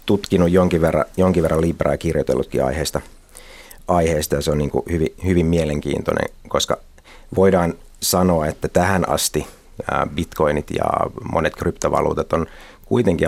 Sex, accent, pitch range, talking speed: male, native, 75-90 Hz, 120 wpm